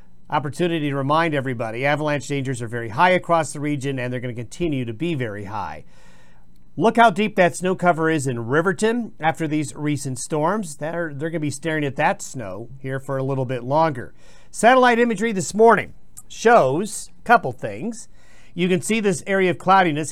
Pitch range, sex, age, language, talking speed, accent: 135-180 Hz, male, 50-69, English, 190 wpm, American